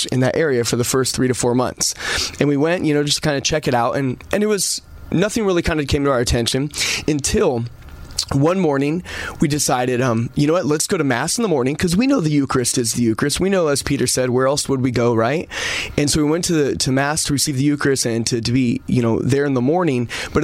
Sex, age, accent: male, 20-39, American